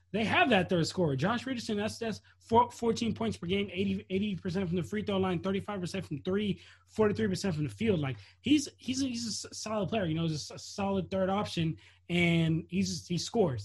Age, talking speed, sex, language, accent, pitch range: 20-39, 195 wpm, male, English, American, 145-195 Hz